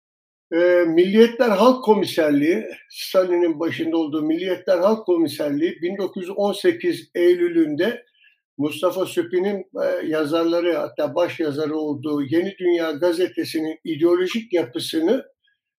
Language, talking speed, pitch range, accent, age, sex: Turkish, 85 wpm, 165-255 Hz, native, 60-79, male